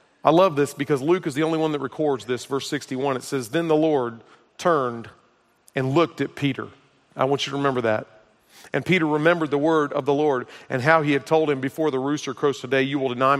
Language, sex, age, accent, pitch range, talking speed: English, male, 40-59, American, 130-160 Hz, 235 wpm